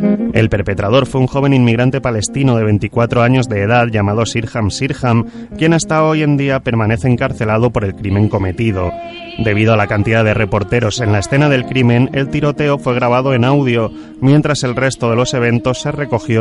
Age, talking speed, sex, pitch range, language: 30-49, 185 wpm, male, 110-135 Hz, Spanish